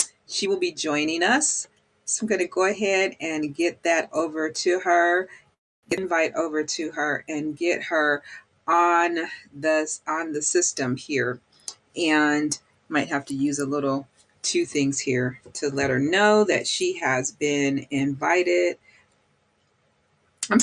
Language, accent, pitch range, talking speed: English, American, 155-235 Hz, 145 wpm